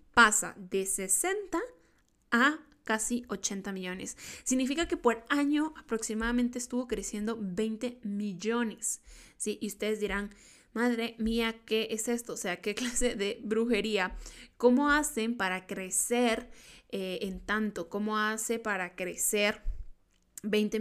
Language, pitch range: Spanish, 210-245 Hz